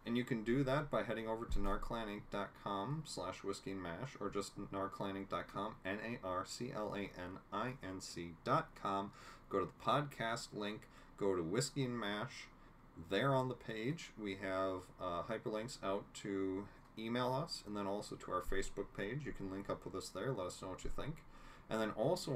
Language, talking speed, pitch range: English, 170 wpm, 95-115 Hz